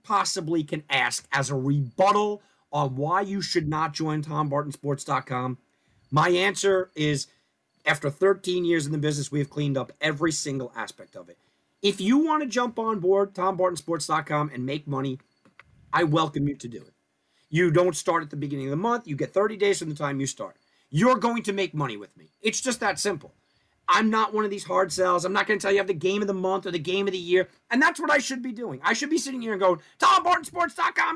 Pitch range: 145-215 Hz